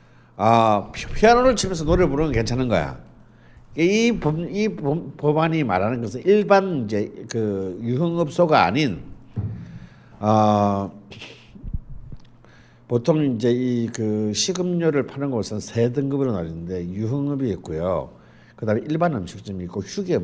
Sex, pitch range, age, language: male, 105-150 Hz, 60-79, Korean